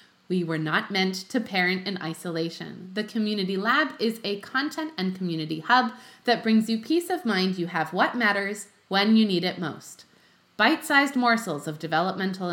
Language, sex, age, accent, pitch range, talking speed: English, female, 30-49, American, 180-250 Hz, 170 wpm